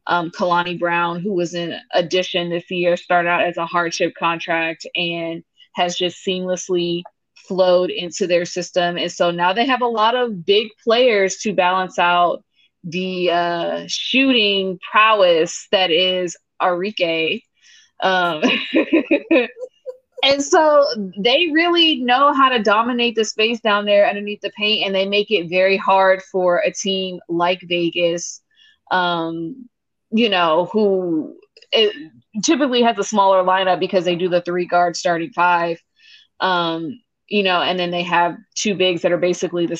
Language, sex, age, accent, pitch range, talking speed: English, female, 20-39, American, 175-225 Hz, 150 wpm